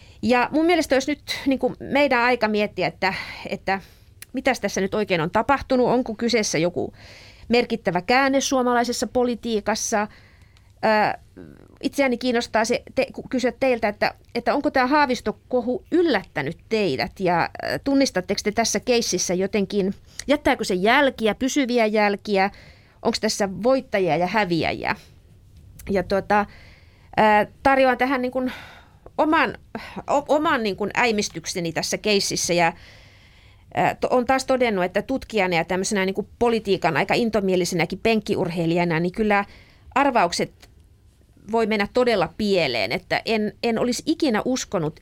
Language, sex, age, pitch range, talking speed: Finnish, female, 30-49, 180-250 Hz, 120 wpm